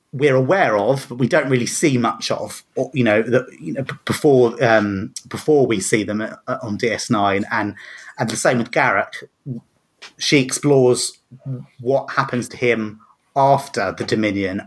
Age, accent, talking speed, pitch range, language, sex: 30-49, British, 155 wpm, 110-135 Hz, English, male